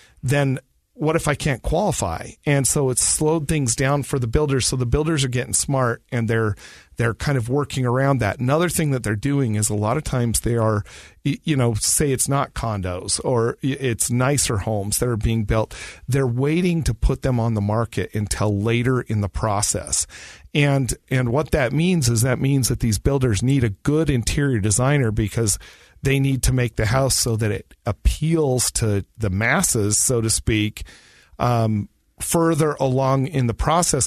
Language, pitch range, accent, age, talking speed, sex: English, 115-145 Hz, American, 40-59, 190 wpm, male